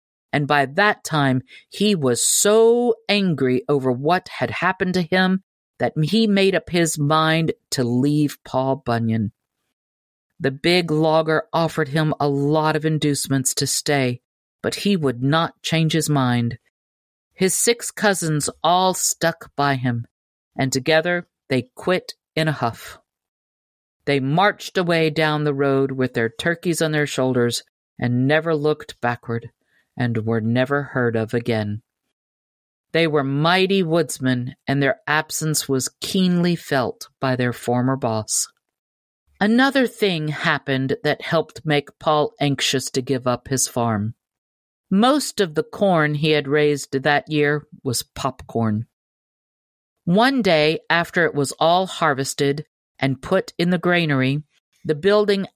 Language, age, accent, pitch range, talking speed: English, 50-69, American, 130-170 Hz, 140 wpm